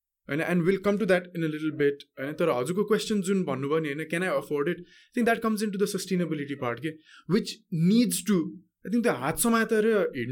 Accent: Indian